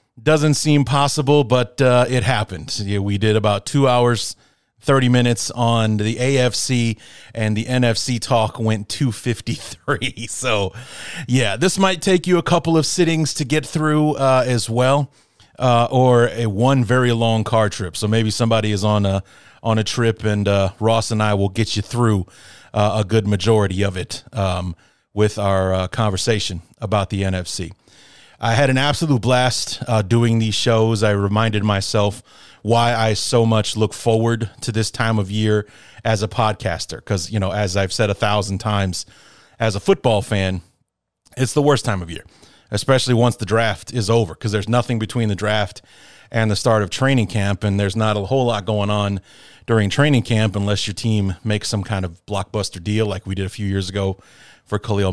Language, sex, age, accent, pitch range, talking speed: English, male, 30-49, American, 105-125 Hz, 185 wpm